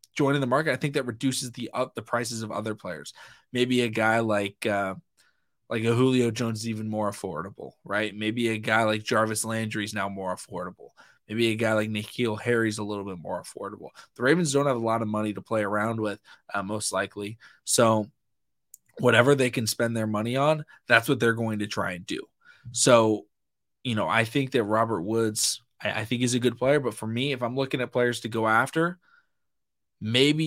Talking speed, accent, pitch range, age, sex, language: 215 wpm, American, 105-125 Hz, 20-39, male, English